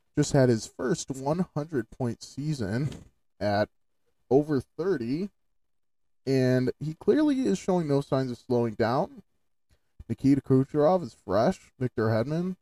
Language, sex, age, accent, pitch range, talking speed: English, male, 20-39, American, 115-155 Hz, 125 wpm